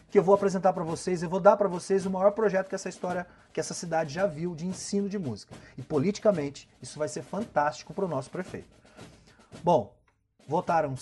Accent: Brazilian